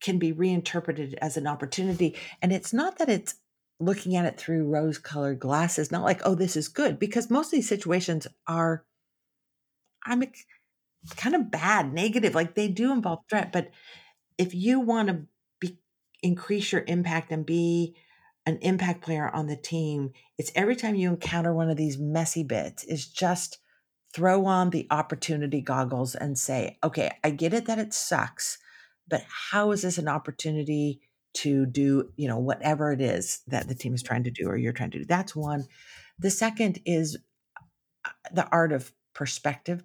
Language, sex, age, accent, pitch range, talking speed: English, female, 50-69, American, 150-190 Hz, 175 wpm